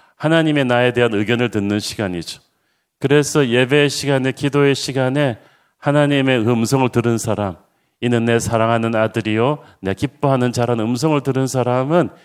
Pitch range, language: 105-135 Hz, Korean